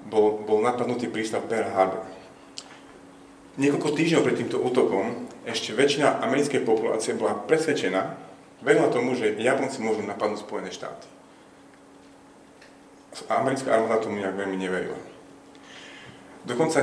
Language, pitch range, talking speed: Slovak, 95-125 Hz, 120 wpm